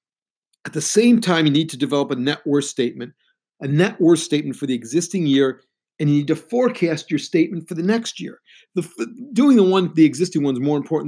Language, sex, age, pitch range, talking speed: English, male, 50-69, 140-190 Hz, 220 wpm